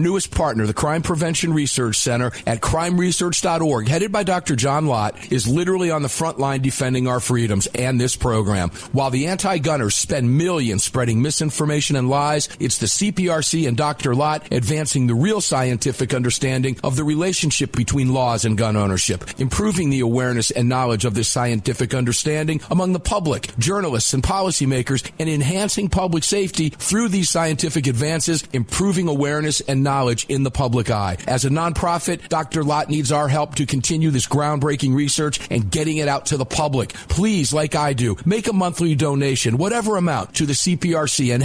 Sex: male